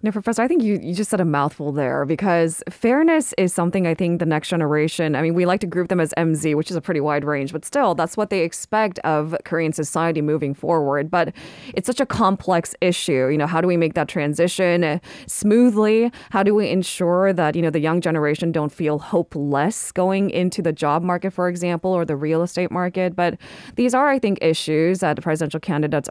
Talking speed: 220 wpm